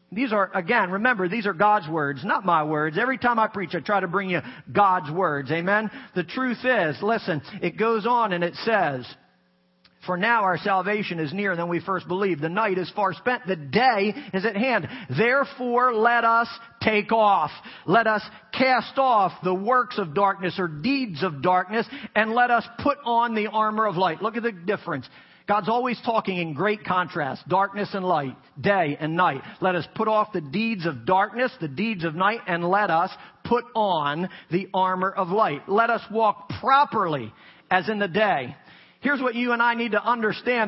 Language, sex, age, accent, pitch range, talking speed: English, male, 40-59, American, 190-255 Hz, 195 wpm